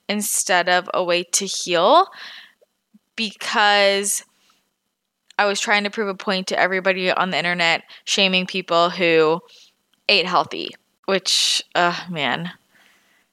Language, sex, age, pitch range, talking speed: English, female, 20-39, 190-245 Hz, 120 wpm